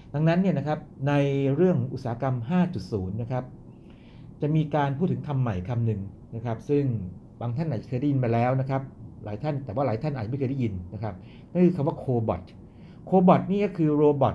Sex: male